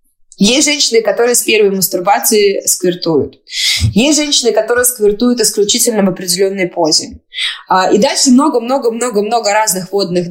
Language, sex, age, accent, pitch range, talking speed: Russian, female, 20-39, native, 185-250 Hz, 135 wpm